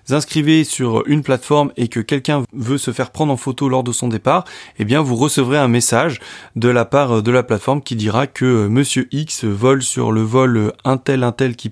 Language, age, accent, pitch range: French, 20-39, French, 115-145 Hz